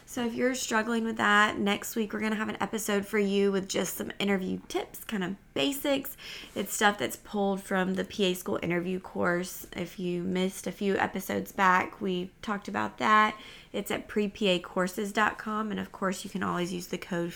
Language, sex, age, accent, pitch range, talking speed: English, female, 20-39, American, 180-225 Hz, 195 wpm